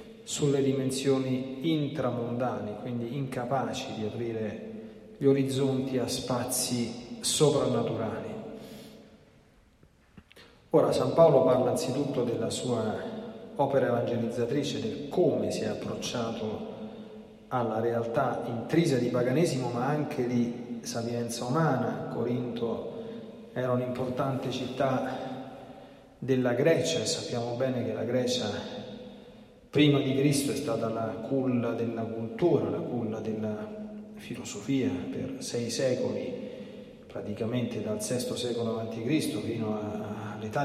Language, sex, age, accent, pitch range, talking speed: Italian, male, 40-59, native, 120-145 Hz, 105 wpm